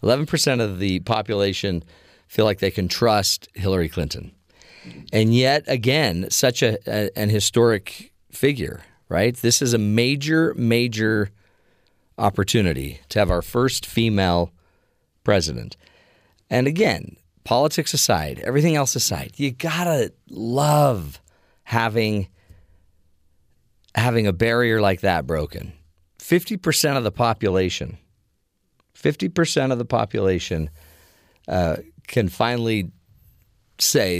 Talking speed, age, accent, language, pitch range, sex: 110 wpm, 40-59, American, English, 85-120 Hz, male